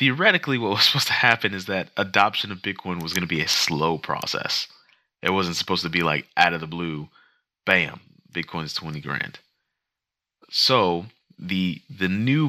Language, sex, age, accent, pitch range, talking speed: English, male, 30-49, American, 80-105 Hz, 180 wpm